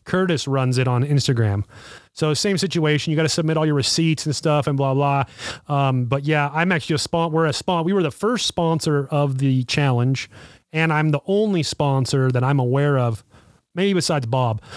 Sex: male